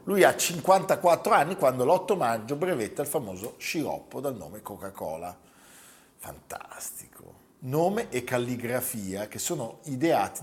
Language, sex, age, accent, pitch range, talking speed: Italian, male, 40-59, native, 95-135 Hz, 125 wpm